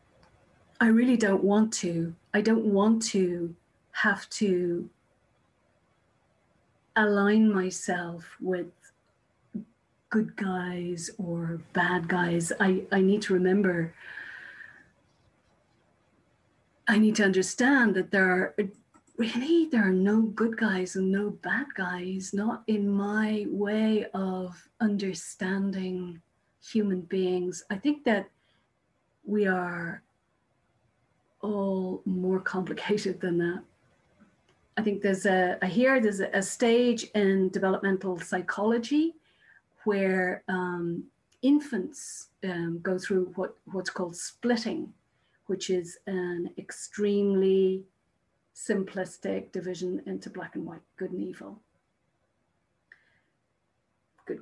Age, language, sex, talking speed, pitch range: 40-59, English, female, 105 wpm, 180-215 Hz